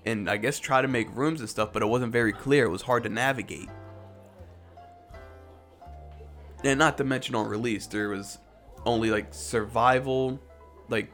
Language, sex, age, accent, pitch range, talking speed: English, male, 20-39, American, 105-150 Hz, 165 wpm